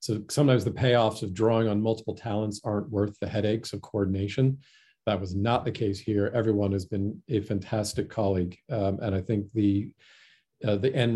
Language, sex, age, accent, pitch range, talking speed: English, male, 40-59, American, 105-130 Hz, 190 wpm